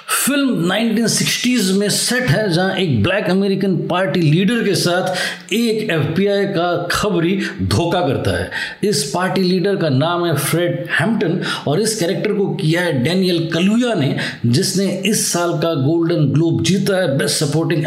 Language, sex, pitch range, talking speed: Hindi, male, 165-205 Hz, 160 wpm